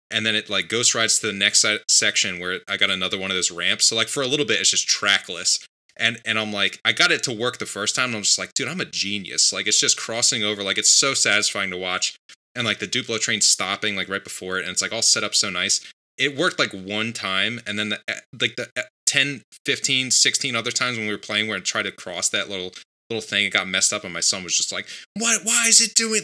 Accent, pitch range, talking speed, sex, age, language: American, 100-165 Hz, 275 wpm, male, 20-39, English